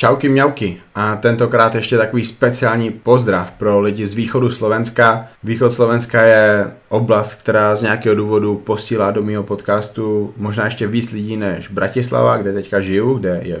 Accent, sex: native, male